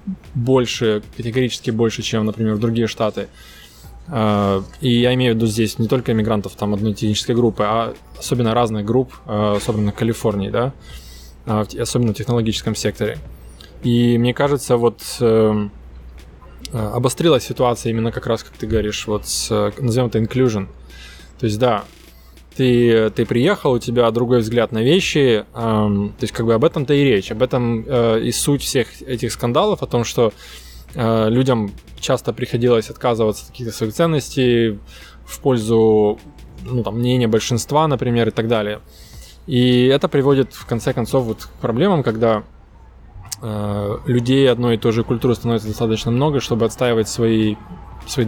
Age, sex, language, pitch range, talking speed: 20-39, male, Russian, 105-125 Hz, 155 wpm